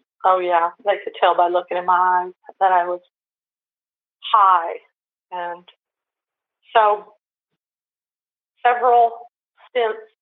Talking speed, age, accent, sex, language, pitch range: 105 wpm, 40-59, American, female, English, 180-220 Hz